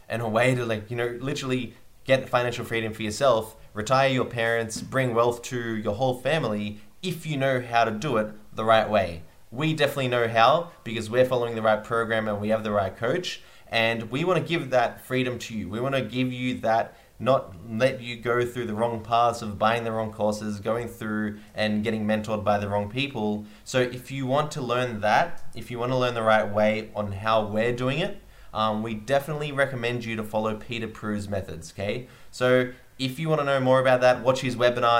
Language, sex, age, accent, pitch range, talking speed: English, male, 20-39, Australian, 105-130 Hz, 220 wpm